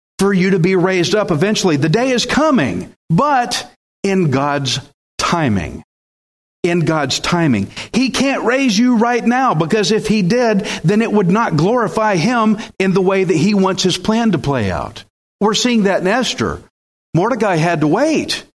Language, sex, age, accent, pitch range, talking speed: English, male, 50-69, American, 150-220 Hz, 175 wpm